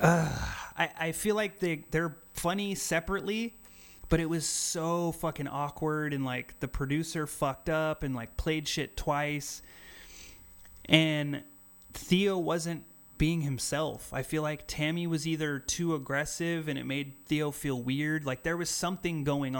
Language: English